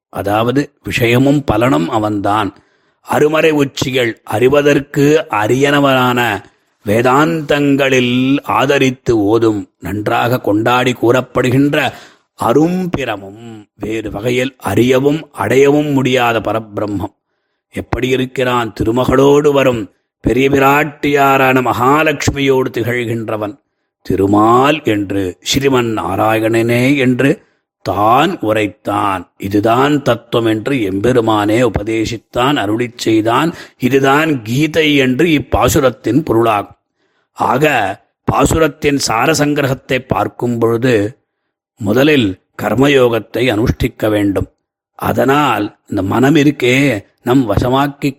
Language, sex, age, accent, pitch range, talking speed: Tamil, male, 30-49, native, 110-140 Hz, 75 wpm